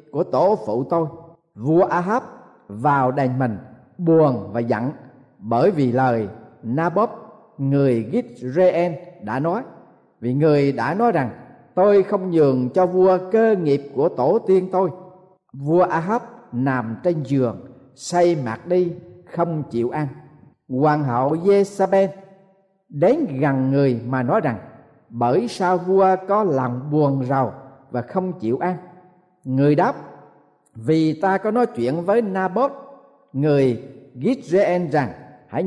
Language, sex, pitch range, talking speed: Vietnamese, male, 135-190 Hz, 135 wpm